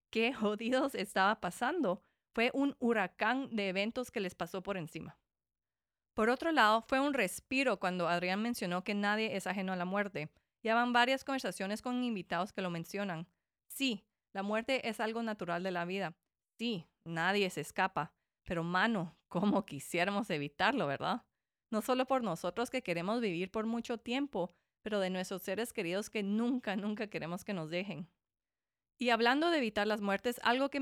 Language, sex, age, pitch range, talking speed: English, female, 30-49, 190-245 Hz, 170 wpm